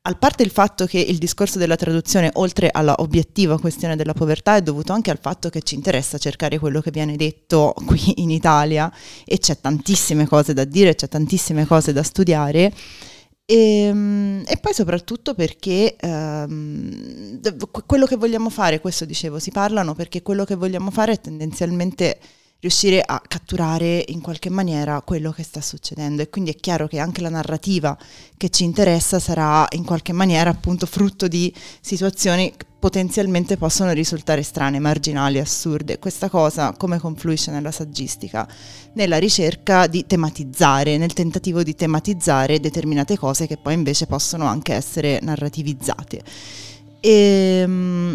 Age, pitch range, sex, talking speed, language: 20-39, 155-190 Hz, female, 150 wpm, Italian